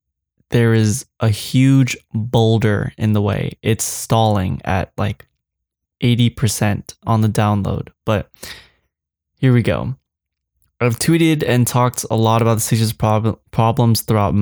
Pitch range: 105-120 Hz